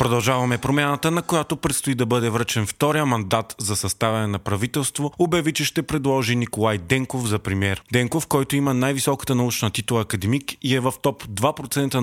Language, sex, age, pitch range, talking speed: Bulgarian, male, 30-49, 110-140 Hz, 170 wpm